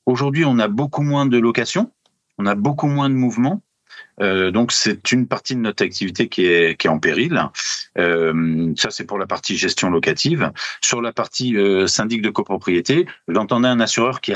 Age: 40-59